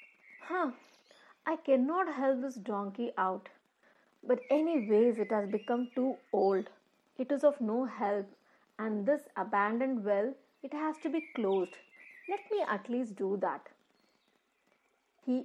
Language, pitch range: English, 210-300 Hz